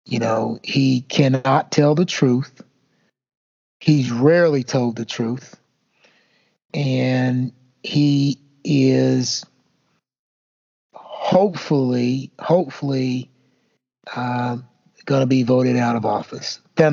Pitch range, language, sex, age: 130-170 Hz, English, male, 50-69